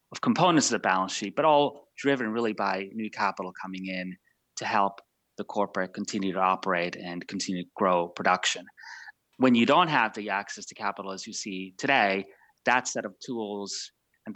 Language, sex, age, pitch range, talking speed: English, male, 30-49, 95-110 Hz, 185 wpm